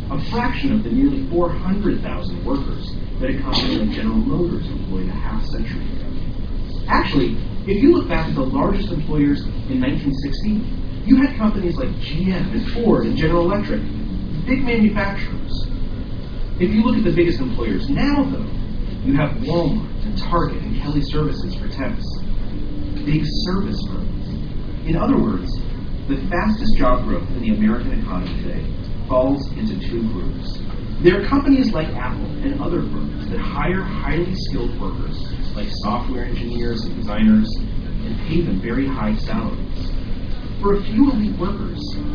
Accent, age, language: American, 40-59, English